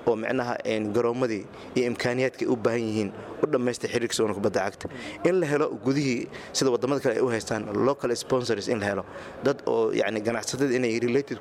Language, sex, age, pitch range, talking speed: English, male, 30-49, 115-135 Hz, 140 wpm